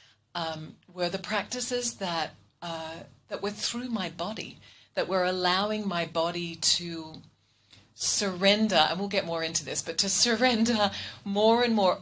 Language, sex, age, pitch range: English, female, 40-59, 155-190 Hz